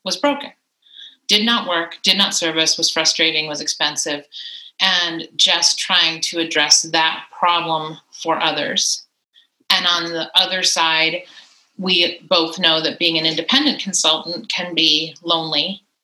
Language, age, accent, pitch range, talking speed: English, 30-49, American, 165-205 Hz, 140 wpm